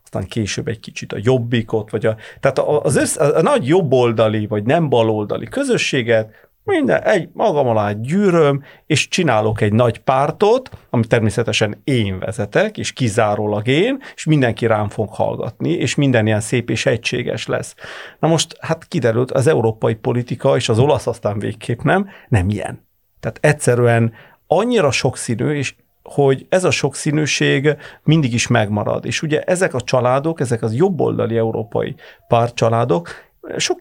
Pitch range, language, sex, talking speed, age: 110-145 Hz, Hungarian, male, 145 wpm, 40-59